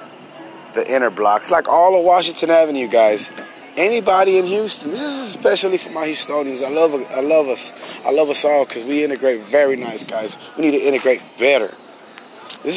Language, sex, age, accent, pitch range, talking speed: English, male, 20-39, American, 135-185 Hz, 185 wpm